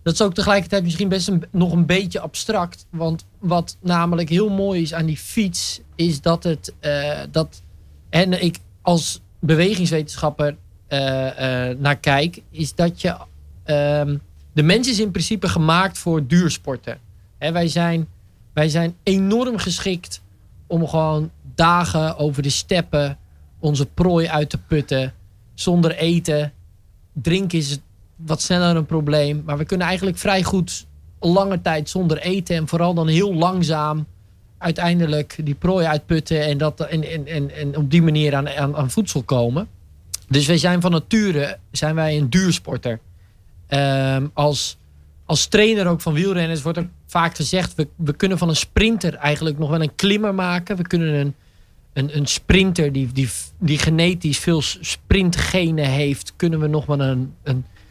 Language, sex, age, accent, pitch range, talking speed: Dutch, male, 20-39, Dutch, 140-175 Hz, 155 wpm